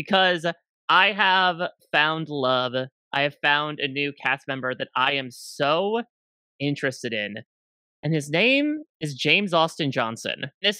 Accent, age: American, 30-49